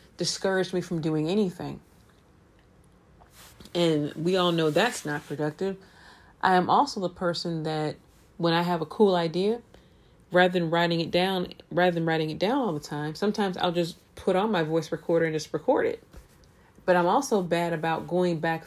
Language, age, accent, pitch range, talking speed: English, 30-49, American, 165-200 Hz, 180 wpm